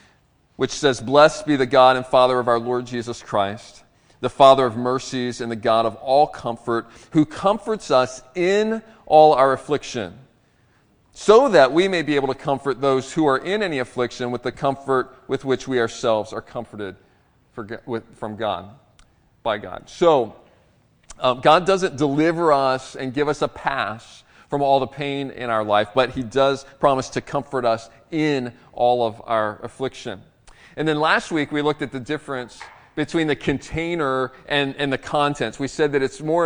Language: English